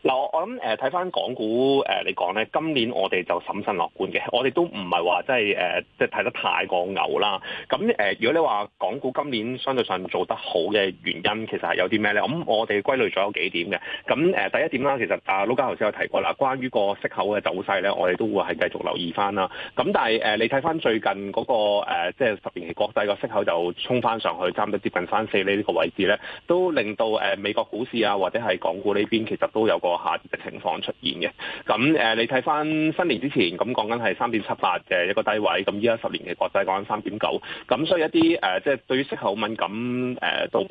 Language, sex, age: Chinese, male, 30-49